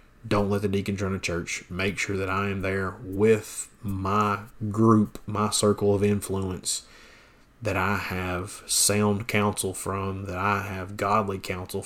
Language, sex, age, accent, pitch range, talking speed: English, male, 30-49, American, 95-110 Hz, 155 wpm